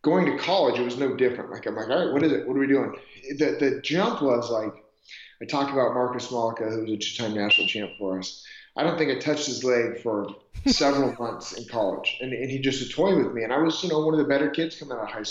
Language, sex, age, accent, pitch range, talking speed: English, male, 30-49, American, 110-130 Hz, 285 wpm